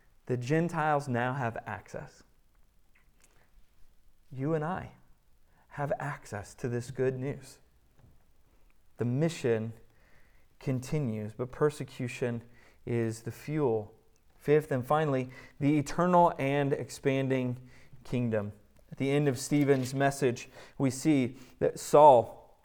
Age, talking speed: 30-49, 105 wpm